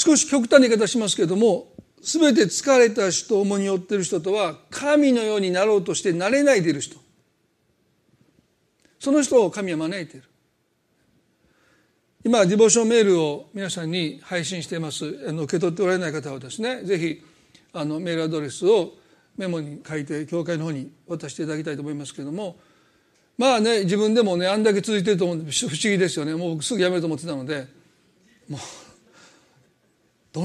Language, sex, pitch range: Japanese, male, 155-205 Hz